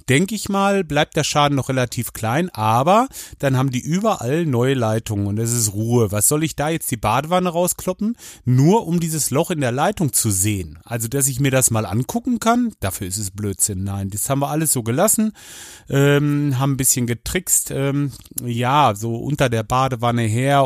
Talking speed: 200 wpm